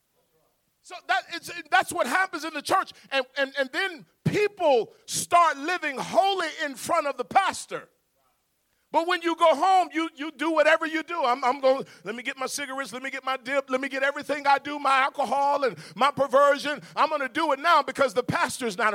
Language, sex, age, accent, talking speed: English, male, 40-59, American, 210 wpm